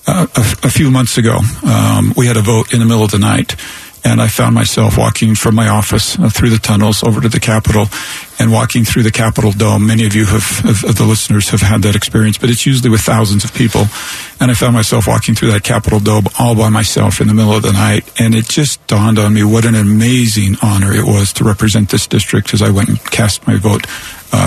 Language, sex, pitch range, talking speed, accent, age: English, male, 105-115 Hz, 250 wpm, American, 50-69